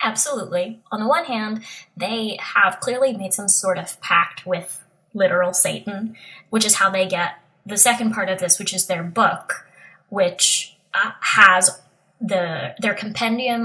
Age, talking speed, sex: 20-39, 160 wpm, female